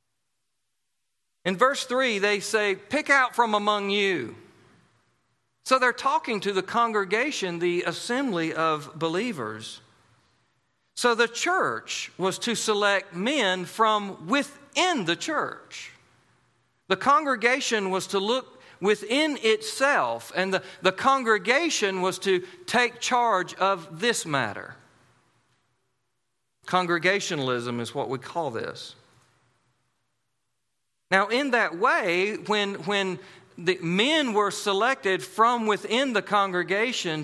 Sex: male